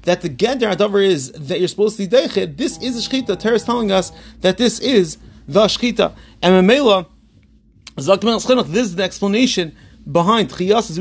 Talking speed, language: 180 wpm, English